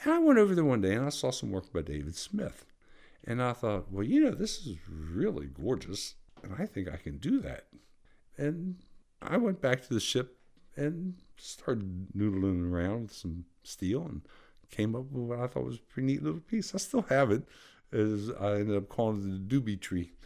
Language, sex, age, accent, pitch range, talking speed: English, male, 60-79, American, 90-130 Hz, 215 wpm